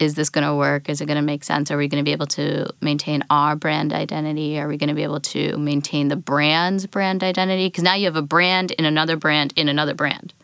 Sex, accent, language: female, American, English